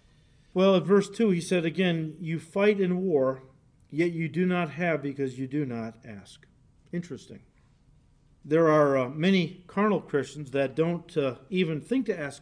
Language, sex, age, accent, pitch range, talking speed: English, male, 50-69, American, 140-195 Hz, 170 wpm